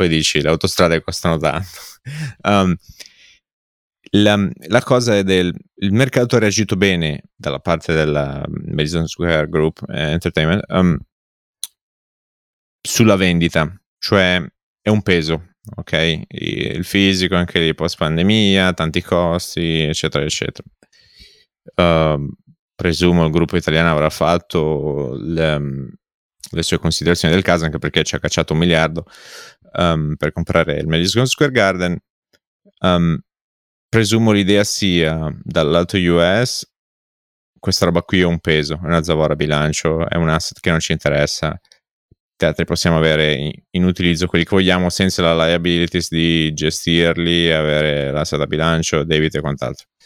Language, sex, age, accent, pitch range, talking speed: Italian, male, 30-49, native, 80-95 Hz, 135 wpm